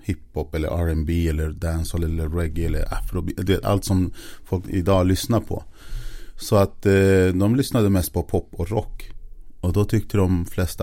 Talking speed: 170 wpm